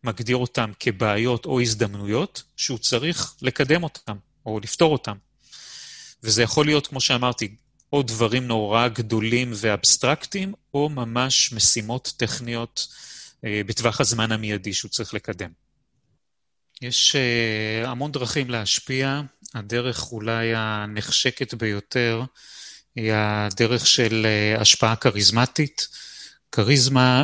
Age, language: 30-49, Hebrew